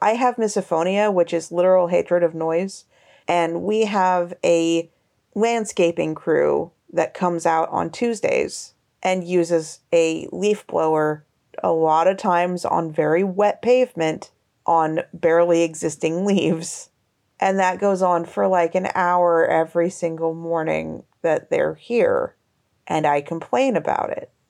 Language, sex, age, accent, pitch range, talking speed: English, female, 30-49, American, 170-235 Hz, 135 wpm